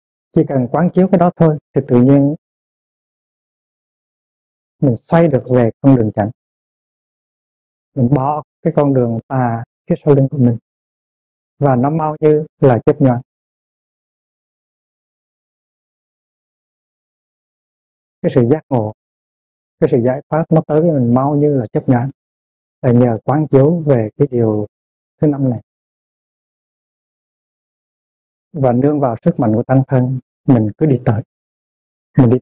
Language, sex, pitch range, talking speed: Vietnamese, male, 115-140 Hz, 140 wpm